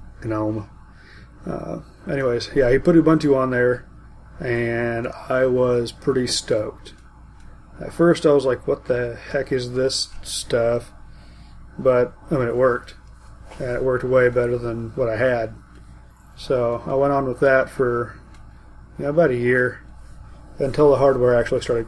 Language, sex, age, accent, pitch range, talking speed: English, male, 30-49, American, 115-135 Hz, 150 wpm